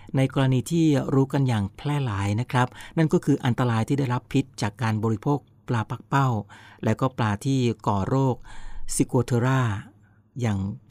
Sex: male